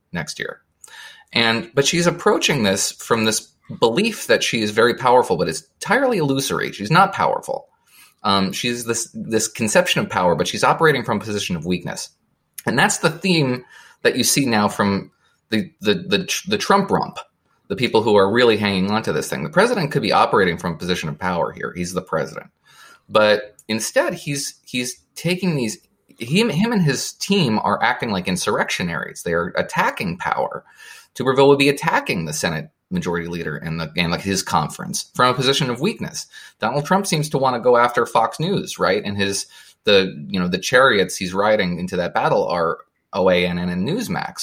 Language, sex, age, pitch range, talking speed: English, male, 30-49, 90-140 Hz, 190 wpm